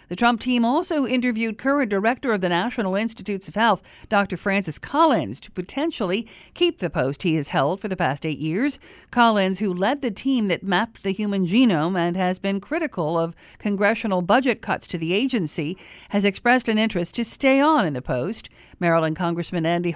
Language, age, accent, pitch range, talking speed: English, 50-69, American, 175-230 Hz, 190 wpm